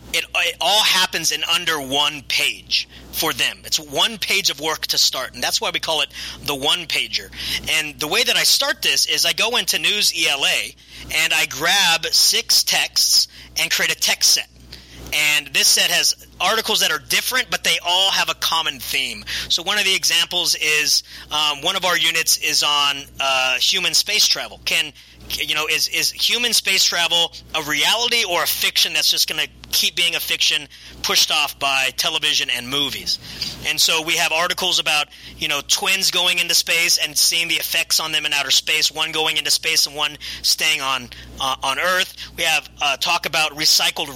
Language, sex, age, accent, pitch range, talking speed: English, male, 30-49, American, 140-180 Hz, 195 wpm